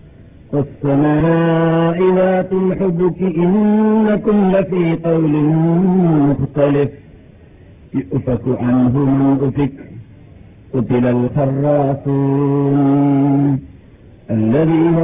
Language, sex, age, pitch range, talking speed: Malayalam, male, 50-69, 140-165 Hz, 55 wpm